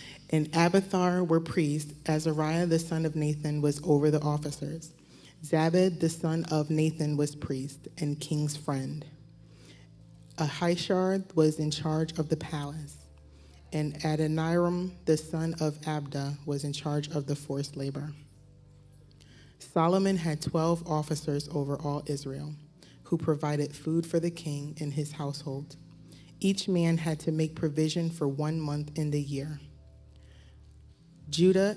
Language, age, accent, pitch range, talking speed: English, 30-49, American, 145-160 Hz, 135 wpm